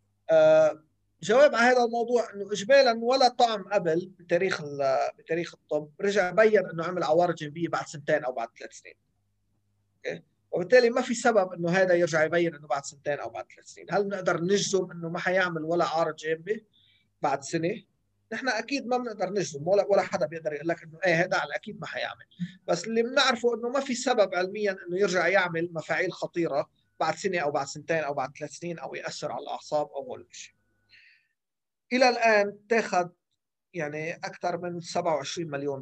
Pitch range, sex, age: 145-195 Hz, male, 30-49